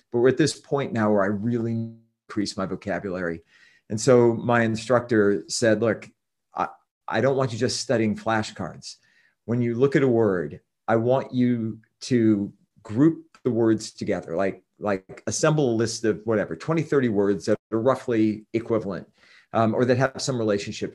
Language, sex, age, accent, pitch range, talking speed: English, male, 40-59, American, 105-130 Hz, 180 wpm